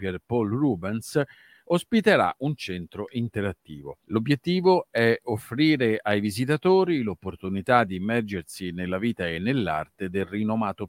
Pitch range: 100-145 Hz